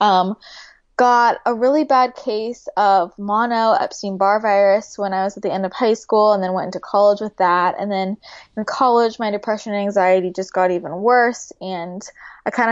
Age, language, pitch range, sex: 20-39, English, 195-235 Hz, female